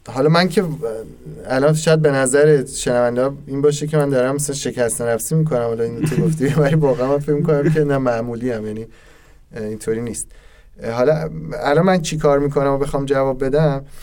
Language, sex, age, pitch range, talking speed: Persian, male, 20-39, 115-145 Hz, 165 wpm